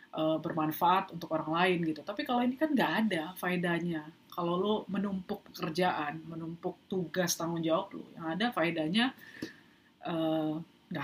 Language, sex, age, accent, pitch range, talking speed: Indonesian, female, 30-49, native, 160-200 Hz, 135 wpm